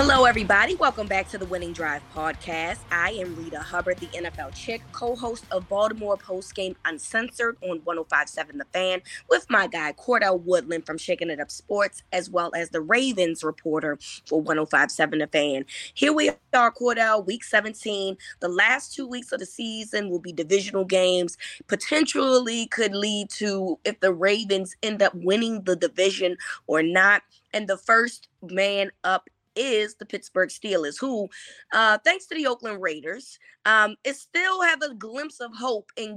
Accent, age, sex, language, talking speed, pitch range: American, 20-39, female, English, 170 wpm, 180-230 Hz